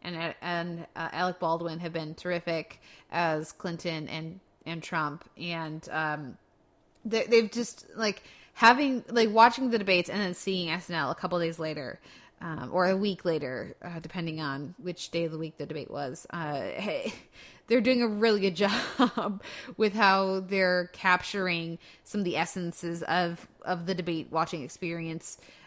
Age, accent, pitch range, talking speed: 20-39, American, 165-195 Hz, 165 wpm